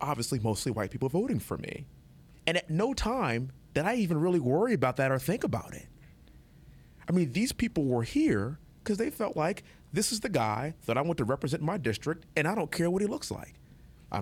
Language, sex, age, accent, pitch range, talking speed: English, male, 30-49, American, 100-140 Hz, 225 wpm